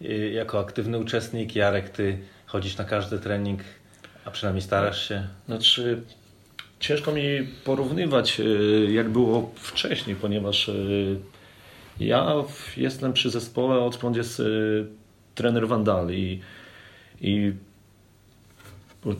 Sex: male